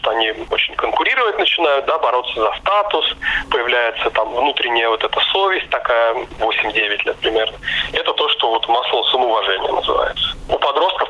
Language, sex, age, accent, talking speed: Russian, male, 30-49, native, 145 wpm